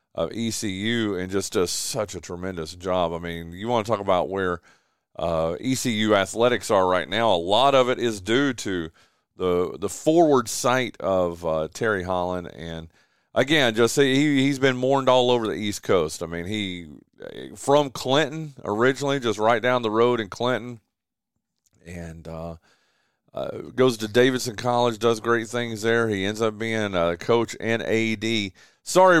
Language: English